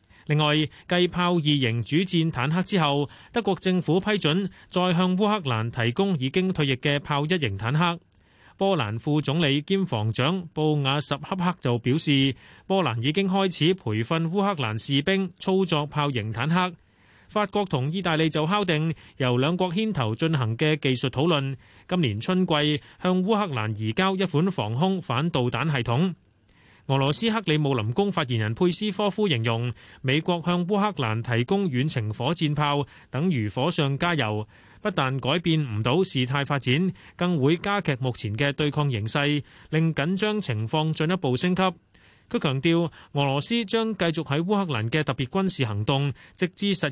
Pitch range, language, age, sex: 130-180 Hz, Chinese, 30-49, male